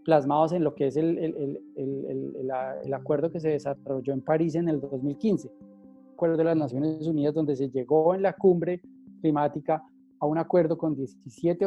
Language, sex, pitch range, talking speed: Spanish, male, 150-180 Hz, 190 wpm